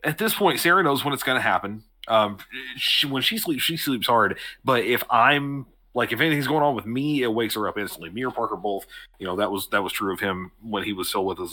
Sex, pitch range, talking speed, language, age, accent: male, 105-130 Hz, 270 wpm, English, 30-49, American